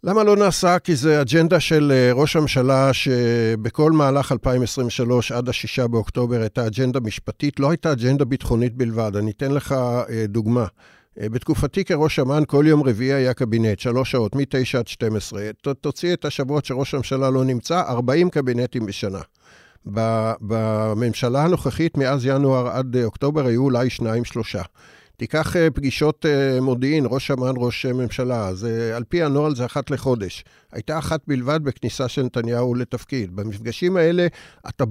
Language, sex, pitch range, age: Hebrew, male, 115-145 Hz, 50-69